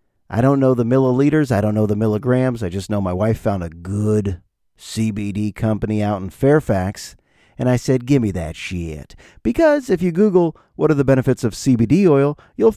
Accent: American